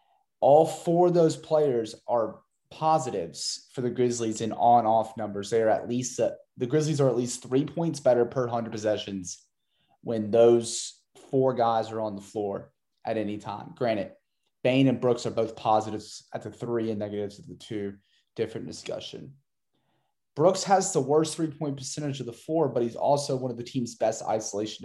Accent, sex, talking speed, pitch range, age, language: American, male, 180 wpm, 105-125 Hz, 30-49, English